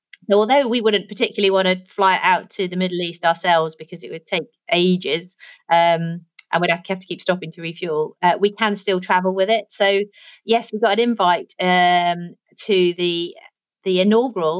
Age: 30-49